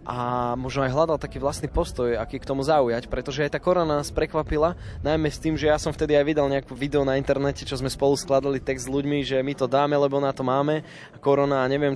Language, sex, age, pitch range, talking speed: Slovak, male, 20-39, 130-155 Hz, 245 wpm